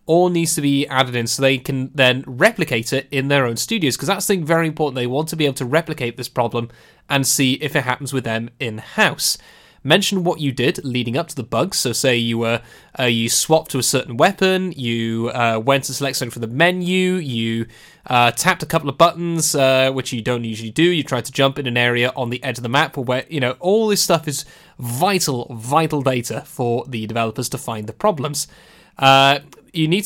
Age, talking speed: 10-29, 225 wpm